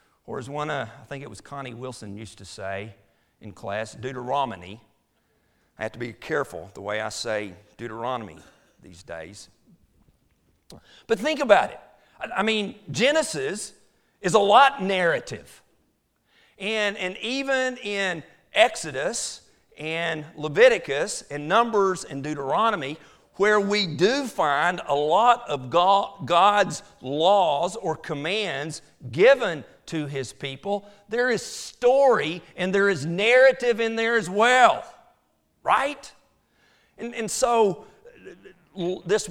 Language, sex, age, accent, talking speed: English, male, 50-69, American, 125 wpm